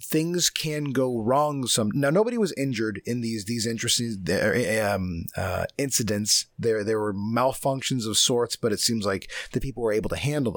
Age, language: 30-49, English